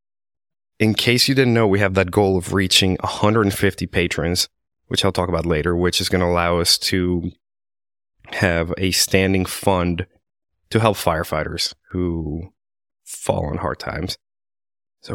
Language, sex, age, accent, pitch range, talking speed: English, male, 30-49, American, 90-100 Hz, 150 wpm